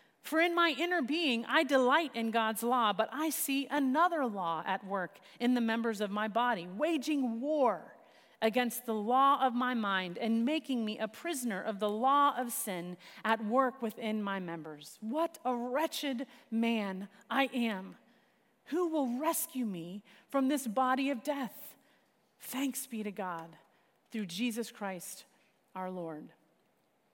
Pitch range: 220-295 Hz